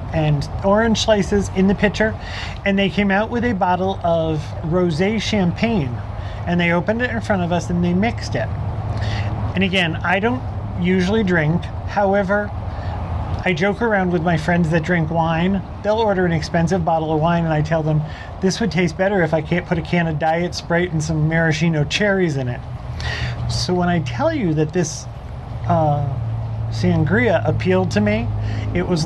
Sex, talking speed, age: male, 180 wpm, 30-49